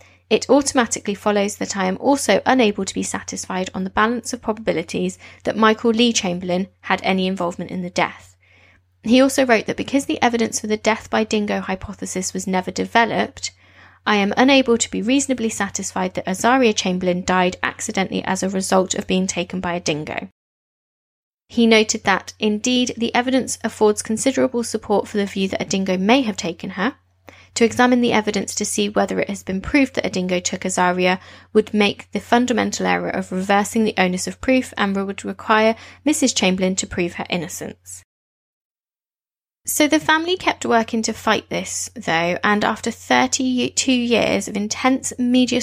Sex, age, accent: female, 20-39, British